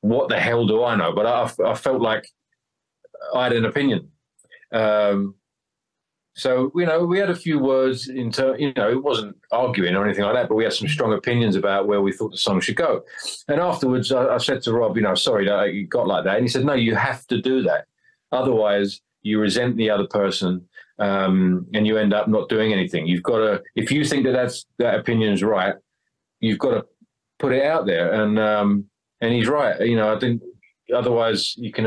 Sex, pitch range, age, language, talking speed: male, 100-125 Hz, 40-59, English, 220 wpm